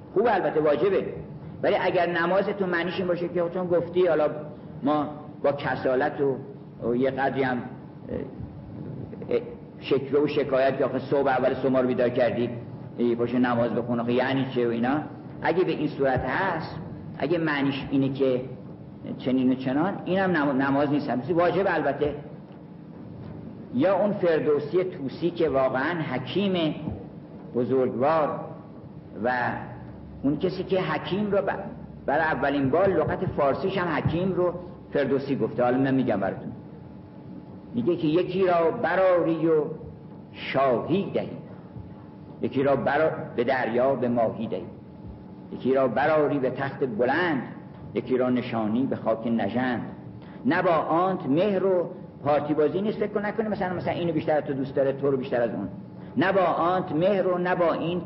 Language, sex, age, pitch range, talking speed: Persian, male, 50-69, 130-175 Hz, 140 wpm